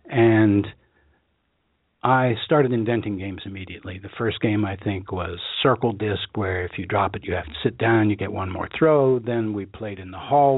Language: English